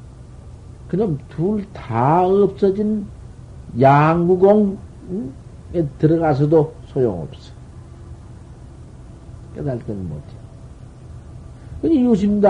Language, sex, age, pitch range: Korean, male, 50-69, 125-200 Hz